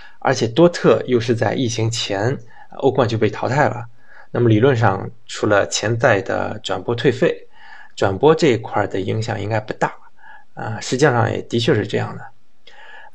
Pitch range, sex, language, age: 110-140 Hz, male, Chinese, 20-39